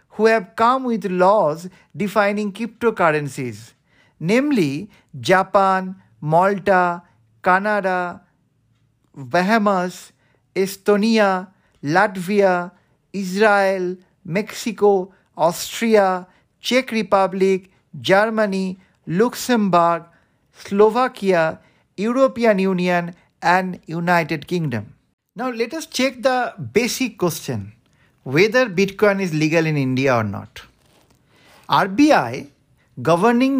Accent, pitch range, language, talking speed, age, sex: native, 165-220 Hz, Bengali, 80 wpm, 50-69, male